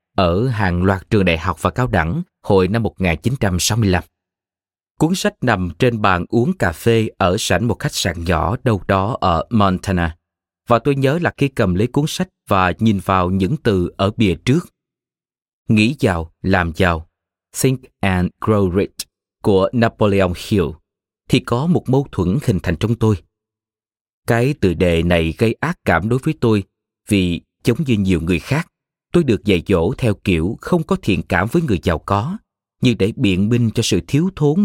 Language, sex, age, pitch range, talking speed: Vietnamese, male, 20-39, 90-125 Hz, 180 wpm